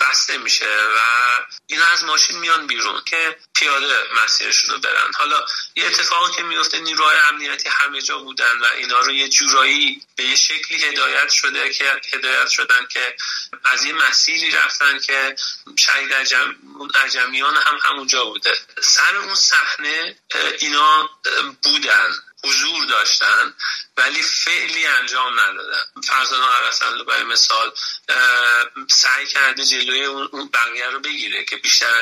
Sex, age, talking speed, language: male, 30-49, 130 wpm, Persian